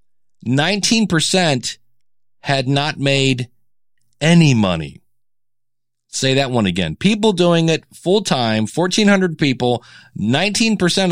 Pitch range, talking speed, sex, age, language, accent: 115-140 Hz, 85 wpm, male, 40-59, English, American